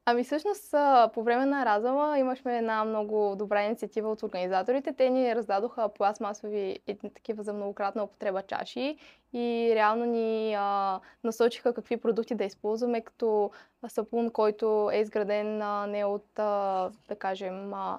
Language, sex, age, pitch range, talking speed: Bulgarian, female, 10-29, 205-240 Hz, 135 wpm